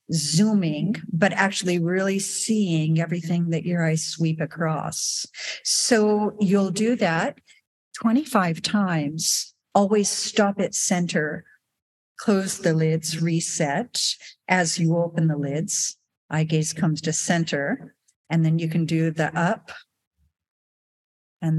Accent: American